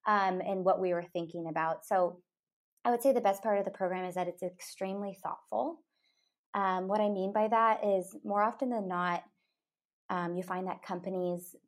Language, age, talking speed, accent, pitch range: English, 20-39, 195 wpm, American, 180-230 Hz